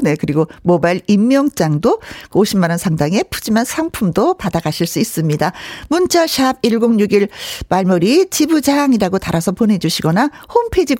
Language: Korean